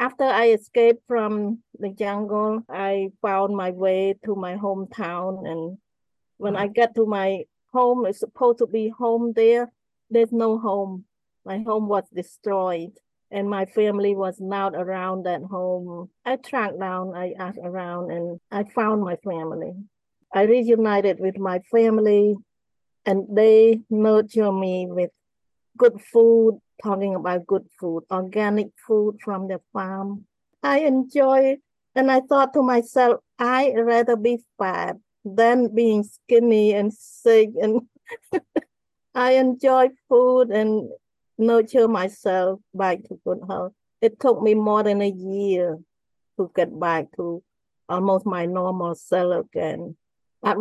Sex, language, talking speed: female, English, 140 wpm